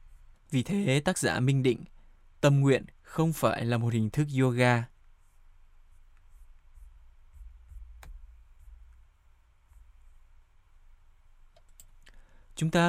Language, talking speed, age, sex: Vietnamese, 80 wpm, 20-39, male